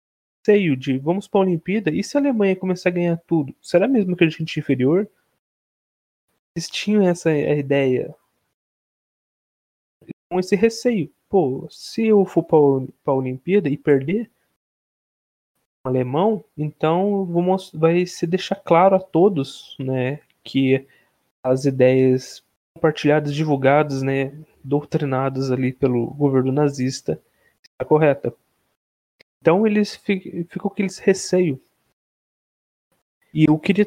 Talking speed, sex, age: 120 wpm, male, 20-39